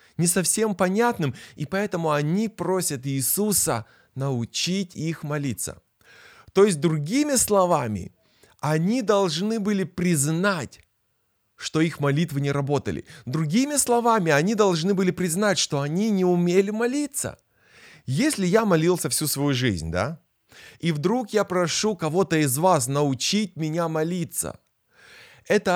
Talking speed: 125 wpm